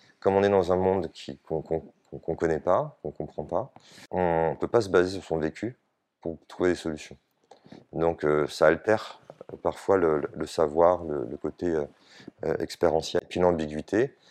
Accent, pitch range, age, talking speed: French, 75-90 Hz, 30-49, 185 wpm